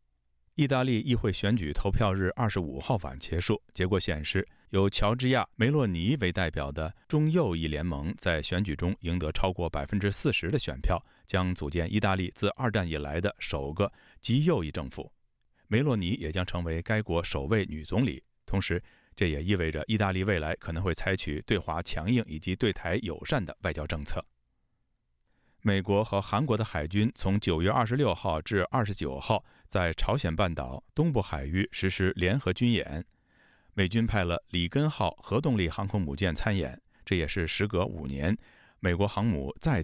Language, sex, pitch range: Chinese, male, 80-105 Hz